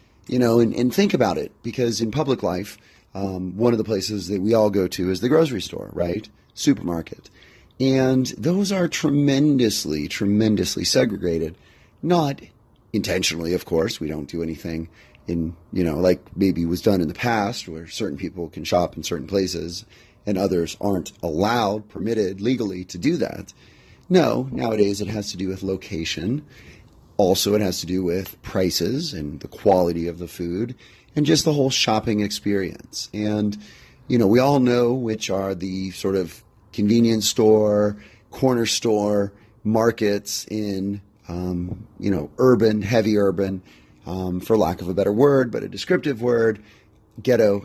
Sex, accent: male, American